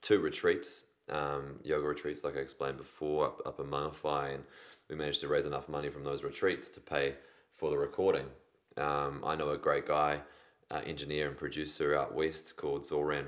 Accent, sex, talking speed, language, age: Australian, male, 190 wpm, English, 20-39